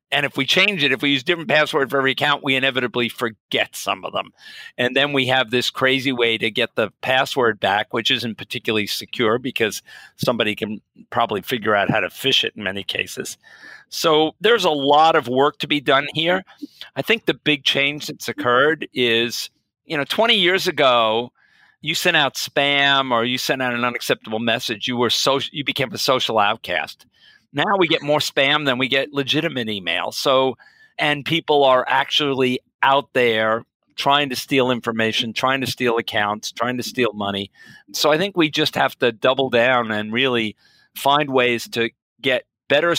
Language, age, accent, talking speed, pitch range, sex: English, 50-69, American, 190 wpm, 115-150 Hz, male